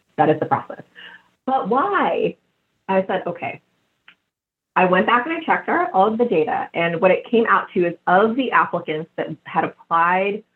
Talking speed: 180 wpm